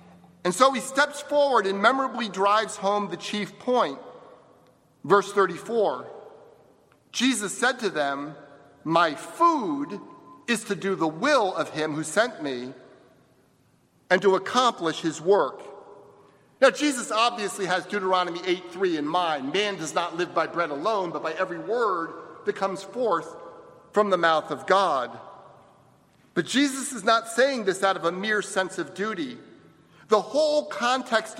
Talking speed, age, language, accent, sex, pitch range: 150 wpm, 50-69, English, American, male, 170-245 Hz